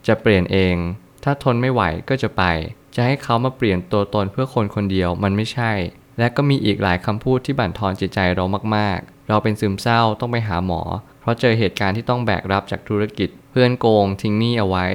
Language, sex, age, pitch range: Thai, male, 20-39, 95-120 Hz